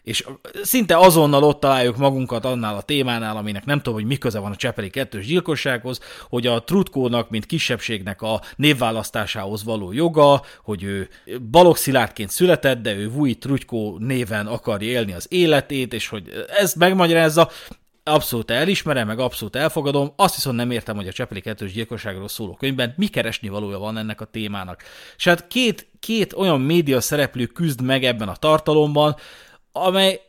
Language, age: Hungarian, 30-49